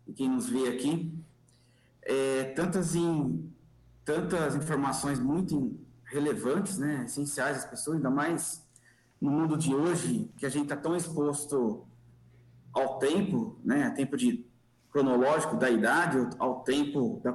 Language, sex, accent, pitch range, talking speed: Portuguese, male, Brazilian, 130-165 Hz, 135 wpm